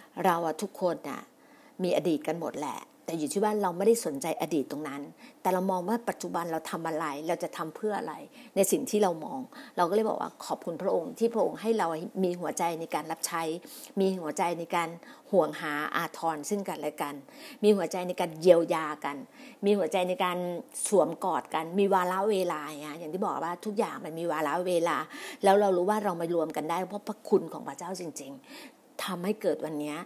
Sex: female